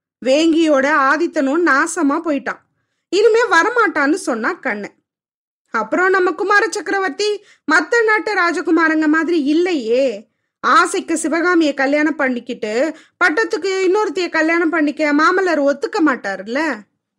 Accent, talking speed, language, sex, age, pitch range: native, 100 wpm, Tamil, female, 20-39, 290-380 Hz